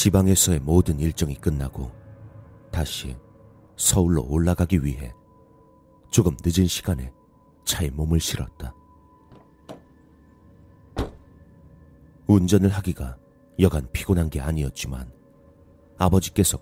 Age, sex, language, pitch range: 40-59, male, Korean, 75-95 Hz